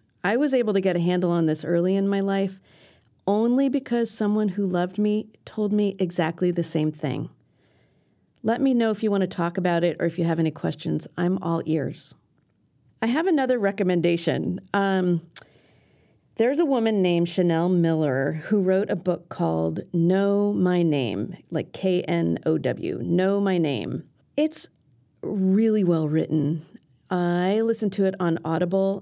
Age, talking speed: 40-59, 160 wpm